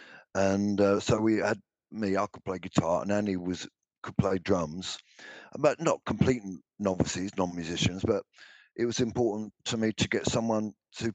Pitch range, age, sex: 100-120 Hz, 50-69, male